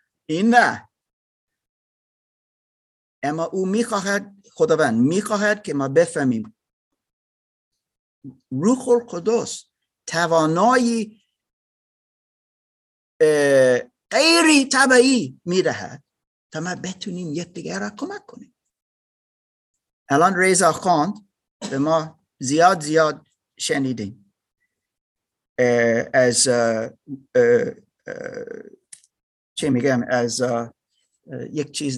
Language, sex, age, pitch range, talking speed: Persian, male, 50-69, 115-190 Hz, 75 wpm